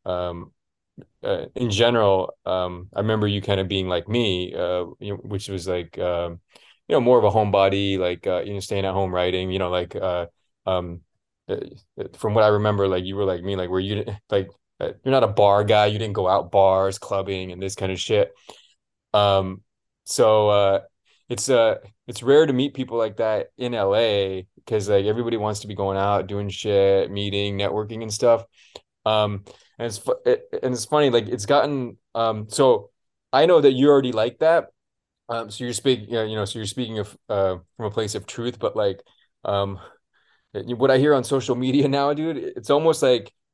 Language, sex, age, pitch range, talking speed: English, male, 20-39, 100-125 Hz, 205 wpm